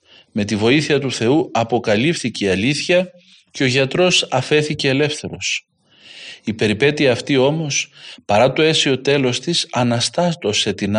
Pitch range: 120-155 Hz